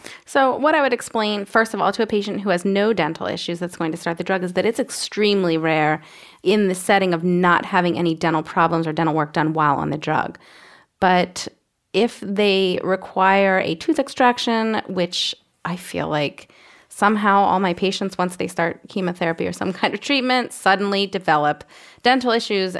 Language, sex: English, female